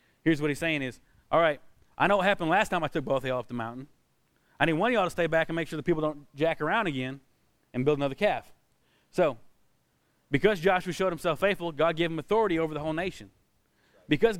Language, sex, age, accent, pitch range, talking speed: English, male, 20-39, American, 150-185 Hz, 240 wpm